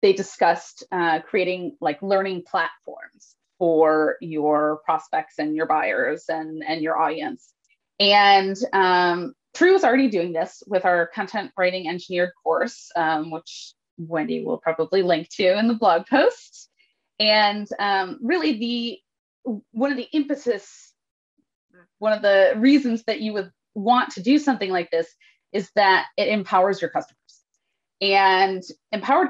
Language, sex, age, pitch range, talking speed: English, female, 20-39, 170-245 Hz, 145 wpm